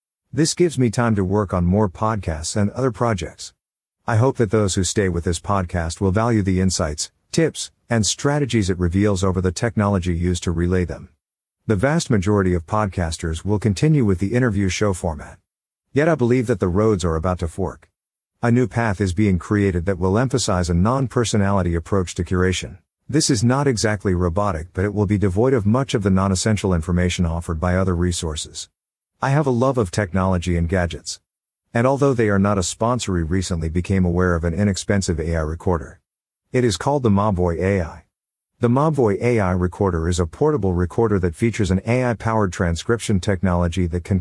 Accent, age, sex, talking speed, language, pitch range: American, 50-69, male, 185 wpm, English, 90-115 Hz